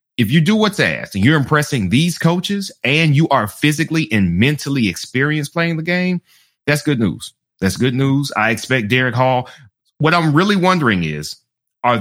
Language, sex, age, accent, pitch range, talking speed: English, male, 30-49, American, 115-155 Hz, 180 wpm